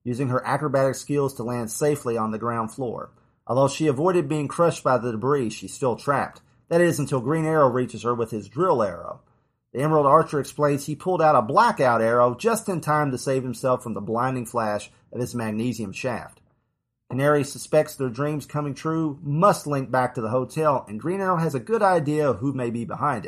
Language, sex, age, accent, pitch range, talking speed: English, male, 40-59, American, 120-150 Hz, 210 wpm